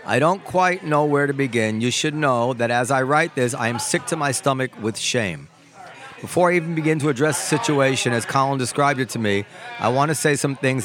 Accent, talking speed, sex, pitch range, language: American, 240 wpm, male, 120-150 Hz, English